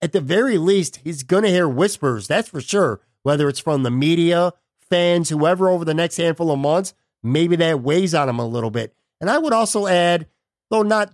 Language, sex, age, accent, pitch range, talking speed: English, male, 50-69, American, 140-170 Hz, 215 wpm